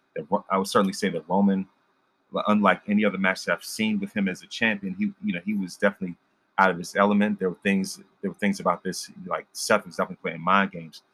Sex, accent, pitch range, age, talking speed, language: male, American, 90-100 Hz, 30-49, 230 wpm, English